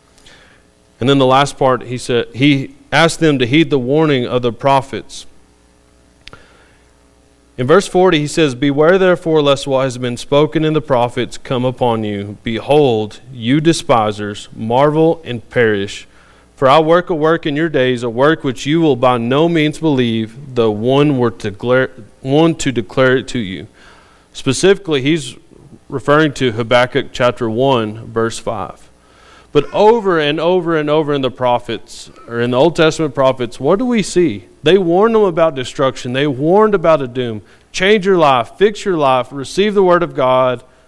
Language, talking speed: English, 175 wpm